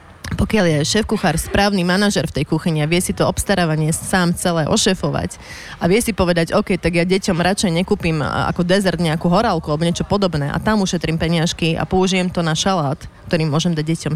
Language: Slovak